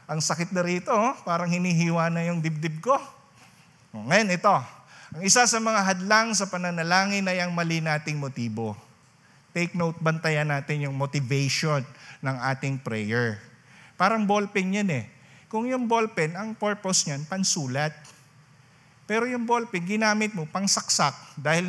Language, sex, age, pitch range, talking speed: Filipino, male, 50-69, 145-195 Hz, 145 wpm